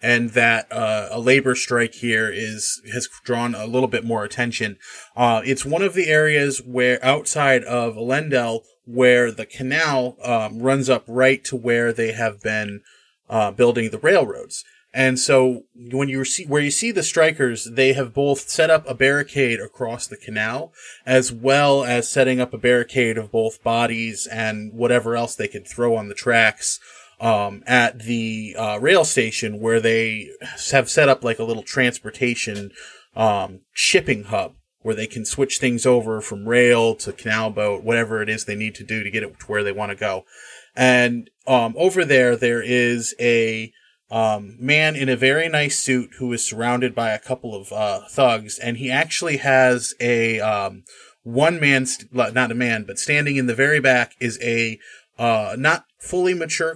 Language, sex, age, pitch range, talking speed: English, male, 30-49, 115-135 Hz, 180 wpm